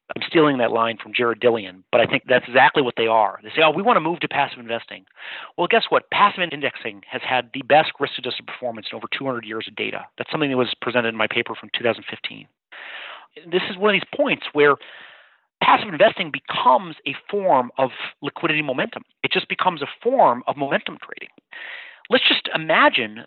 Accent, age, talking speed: American, 40-59, 200 wpm